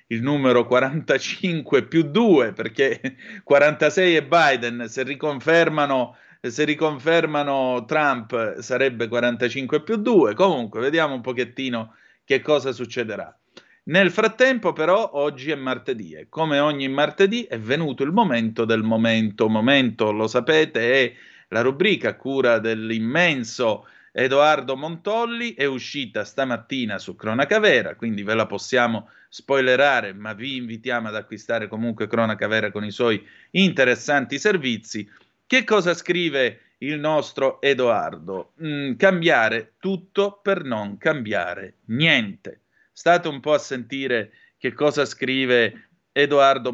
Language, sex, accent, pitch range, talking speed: Italian, male, native, 115-155 Hz, 125 wpm